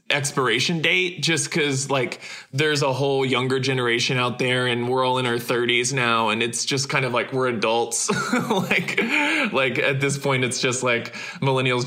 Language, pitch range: English, 120-140 Hz